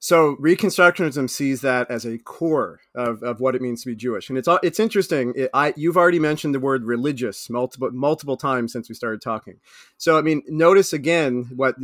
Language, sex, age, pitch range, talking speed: English, male, 40-59, 120-155 Hz, 195 wpm